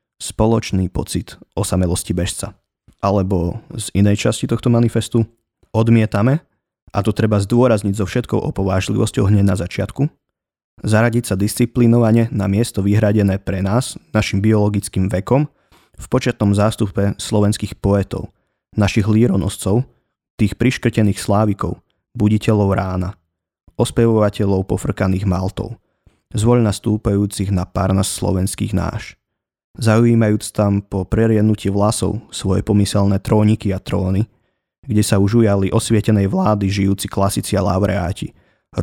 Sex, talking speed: male, 110 wpm